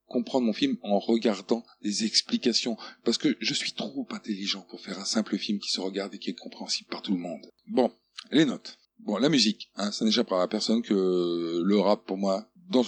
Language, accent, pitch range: French, French, 105-155 Hz